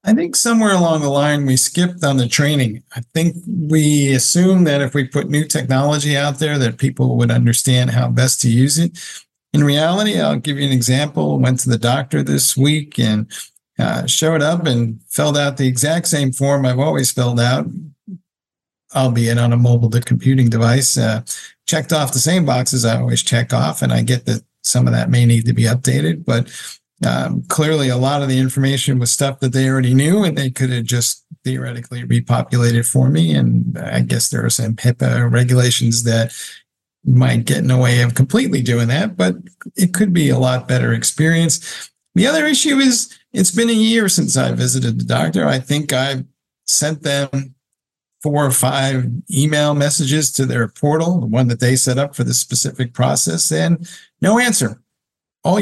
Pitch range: 120-155 Hz